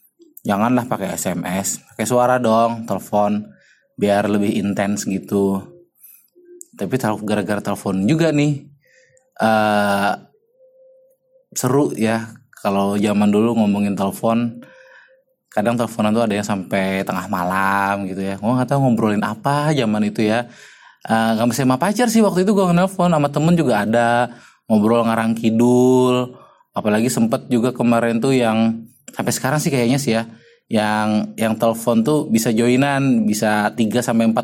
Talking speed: 135 wpm